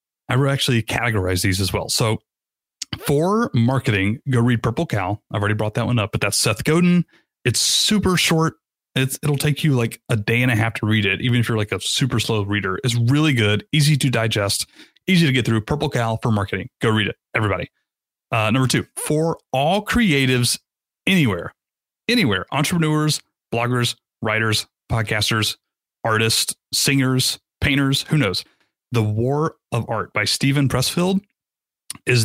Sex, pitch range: male, 110-140 Hz